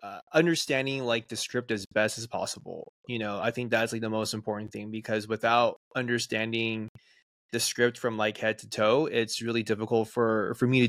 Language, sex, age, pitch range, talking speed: English, male, 20-39, 110-125 Hz, 200 wpm